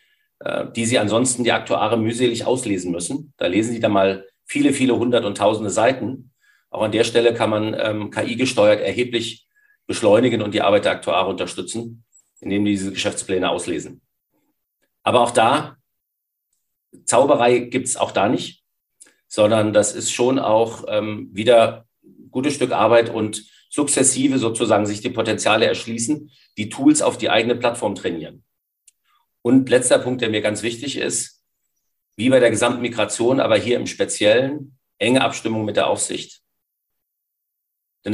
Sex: male